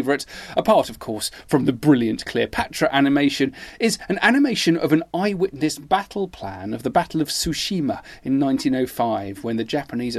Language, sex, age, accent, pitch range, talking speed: English, male, 40-59, British, 120-175 Hz, 155 wpm